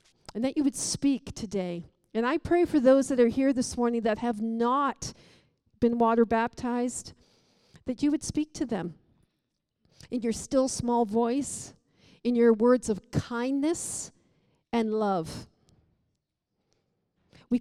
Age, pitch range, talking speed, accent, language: 50-69, 225-270 Hz, 140 wpm, American, English